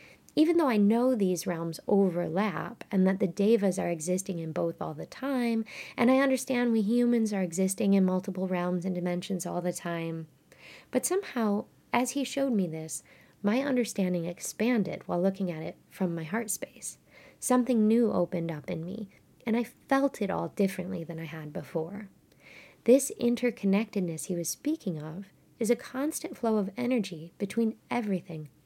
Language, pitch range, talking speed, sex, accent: English, 175-230 Hz, 170 wpm, female, American